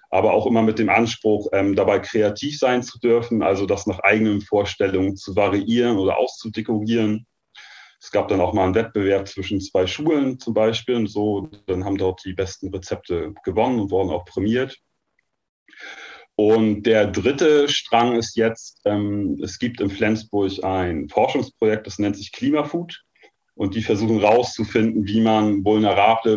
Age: 30-49